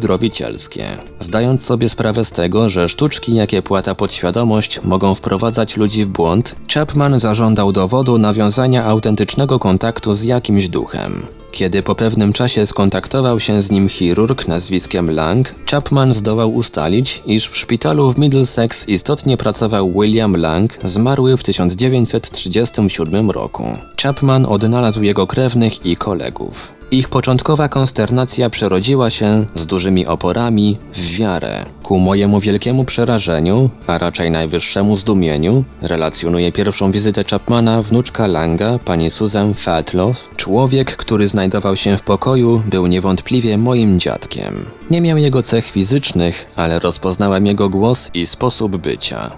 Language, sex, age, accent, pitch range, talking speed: Polish, male, 20-39, native, 95-120 Hz, 130 wpm